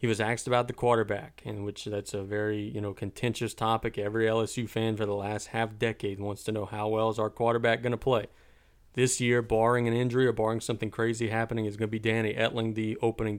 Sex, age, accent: male, 40-59, American